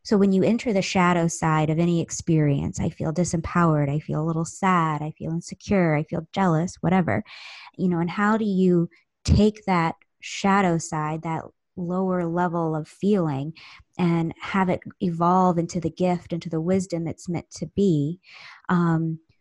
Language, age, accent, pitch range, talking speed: English, 20-39, American, 170-205 Hz, 170 wpm